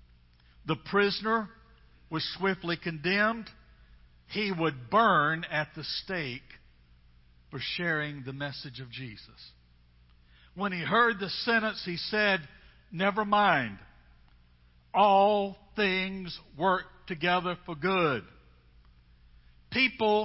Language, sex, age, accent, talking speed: English, male, 60-79, American, 100 wpm